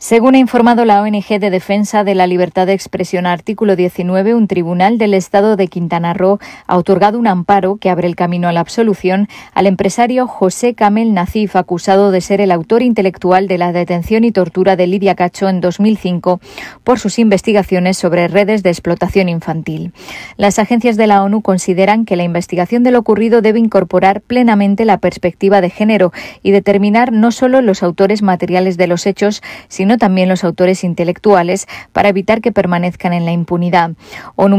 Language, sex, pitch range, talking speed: Spanish, female, 180-215 Hz, 180 wpm